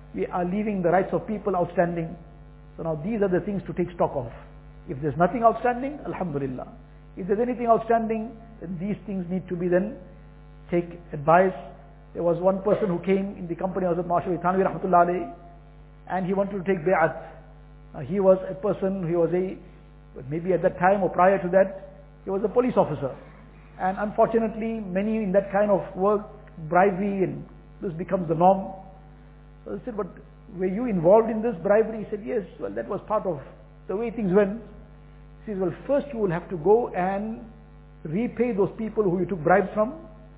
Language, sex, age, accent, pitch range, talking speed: English, male, 60-79, Indian, 165-200 Hz, 185 wpm